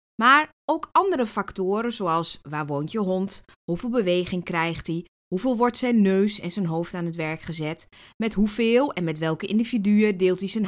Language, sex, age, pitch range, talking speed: Dutch, female, 20-39, 165-250 Hz, 185 wpm